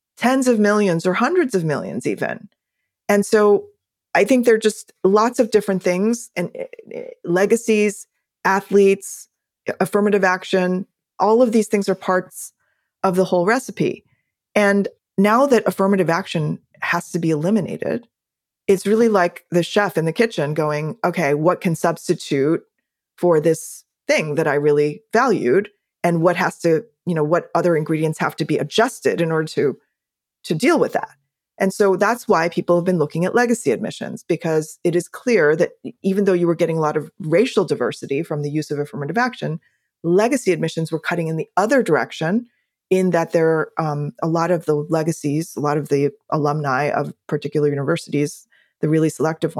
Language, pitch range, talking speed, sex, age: English, 160-210 Hz, 175 wpm, female, 20-39